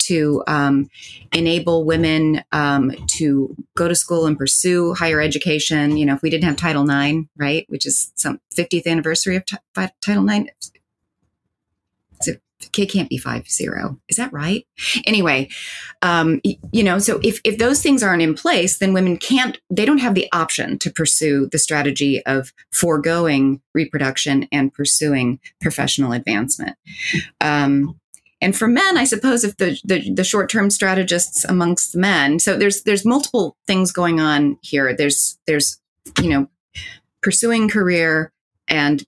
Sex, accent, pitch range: female, American, 145-195 Hz